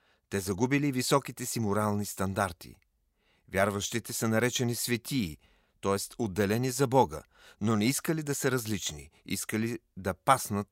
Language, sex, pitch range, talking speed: Bulgarian, male, 95-130 Hz, 130 wpm